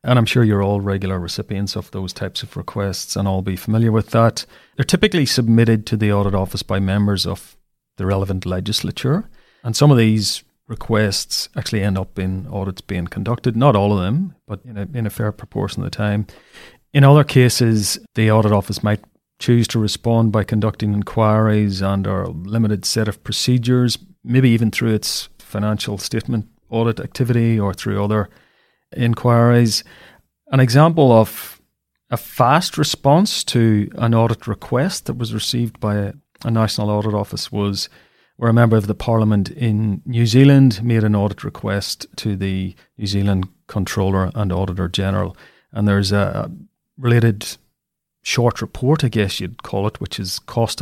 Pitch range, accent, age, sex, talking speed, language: 100-120 Hz, Irish, 40-59, male, 170 wpm, English